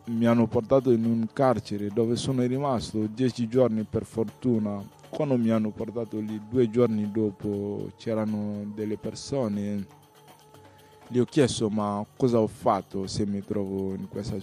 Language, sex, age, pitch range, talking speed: Italian, male, 20-39, 100-115 Hz, 150 wpm